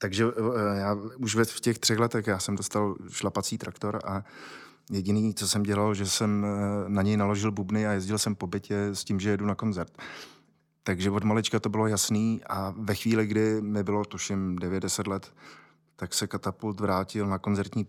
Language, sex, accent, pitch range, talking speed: Czech, male, native, 95-110 Hz, 185 wpm